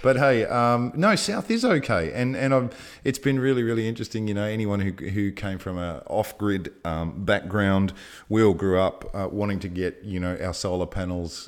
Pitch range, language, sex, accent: 90-115 Hz, English, male, Australian